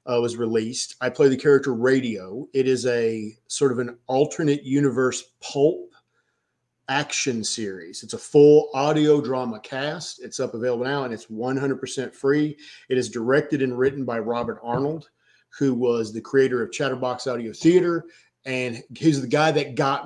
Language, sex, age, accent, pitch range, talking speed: English, male, 40-59, American, 125-150 Hz, 165 wpm